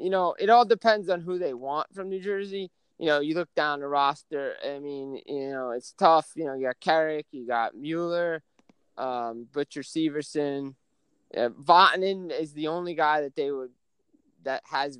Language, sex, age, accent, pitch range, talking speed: English, male, 20-39, American, 130-160 Hz, 190 wpm